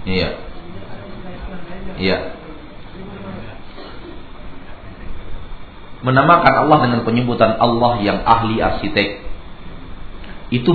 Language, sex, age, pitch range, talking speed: Malay, male, 40-59, 100-155 Hz, 60 wpm